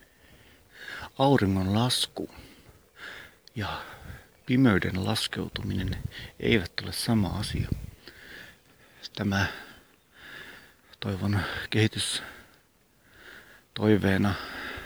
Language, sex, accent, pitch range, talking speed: Finnish, male, native, 100-115 Hz, 55 wpm